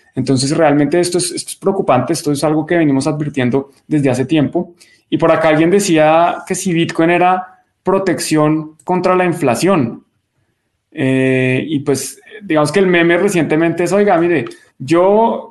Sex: male